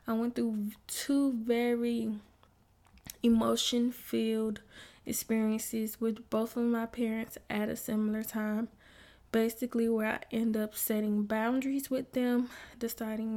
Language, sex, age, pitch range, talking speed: English, female, 10-29, 220-240 Hz, 115 wpm